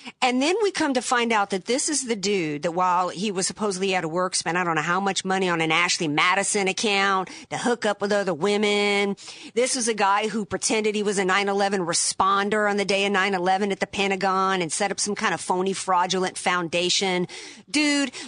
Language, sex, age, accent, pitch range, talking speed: English, female, 50-69, American, 180-235 Hz, 220 wpm